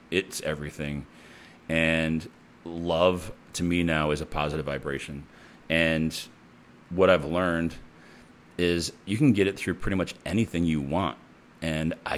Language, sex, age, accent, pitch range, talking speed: English, male, 40-59, American, 80-90 Hz, 140 wpm